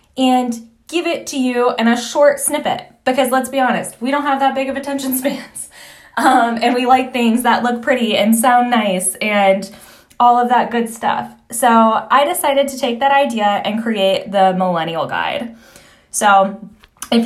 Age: 10-29